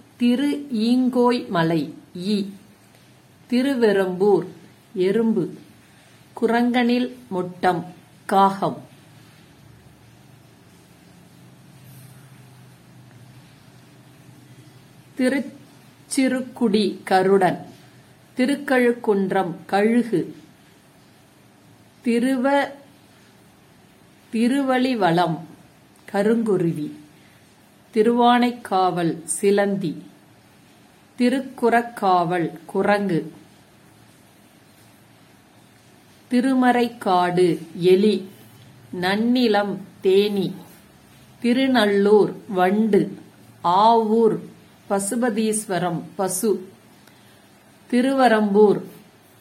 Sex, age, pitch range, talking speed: female, 50-69, 165-235 Hz, 45 wpm